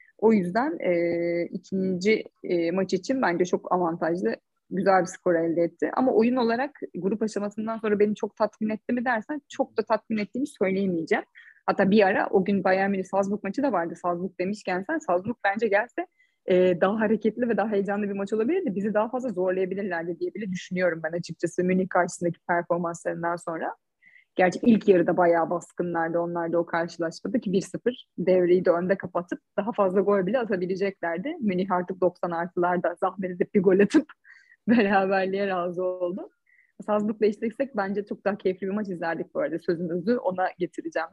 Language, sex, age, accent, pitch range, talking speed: Turkish, female, 30-49, native, 175-215 Hz, 170 wpm